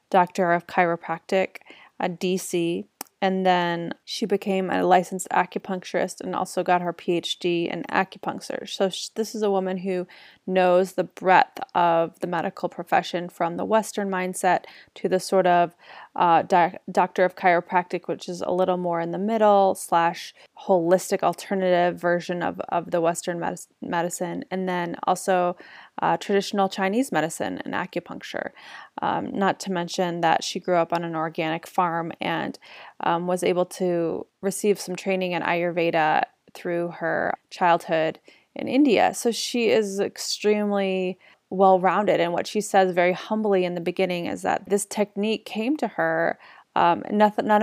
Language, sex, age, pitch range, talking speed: English, female, 20-39, 175-200 Hz, 150 wpm